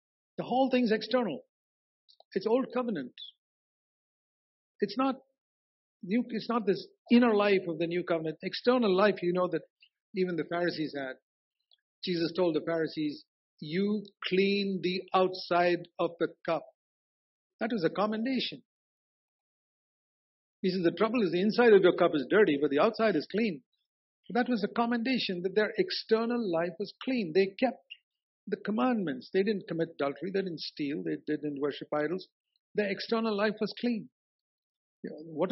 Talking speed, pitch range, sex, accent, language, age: 155 wpm, 155-220 Hz, male, Indian, English, 50-69